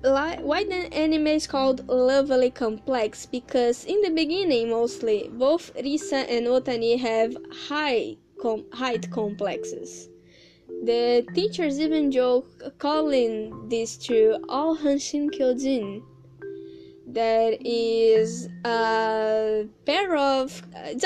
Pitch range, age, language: 225-310 Hz, 10-29, English